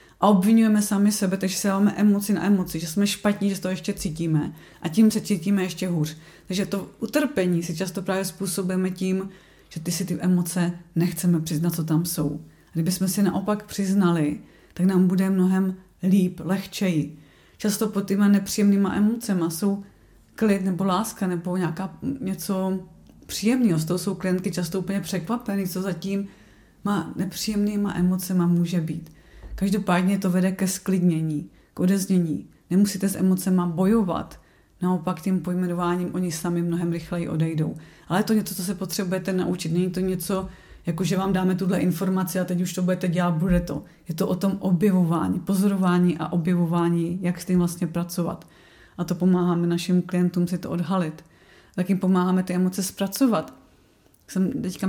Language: Czech